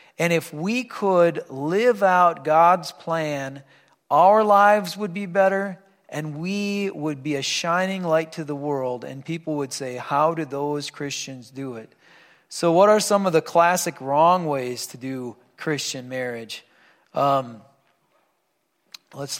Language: English